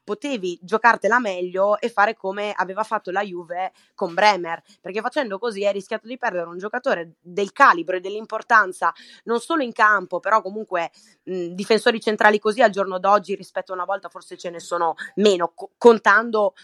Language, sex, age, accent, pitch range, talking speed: Italian, female, 20-39, native, 180-230 Hz, 175 wpm